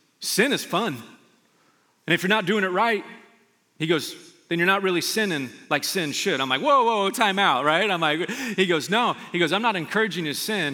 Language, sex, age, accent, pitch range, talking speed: English, male, 40-59, American, 140-195 Hz, 230 wpm